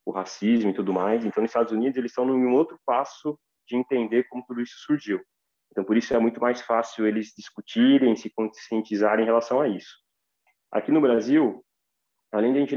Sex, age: male, 20-39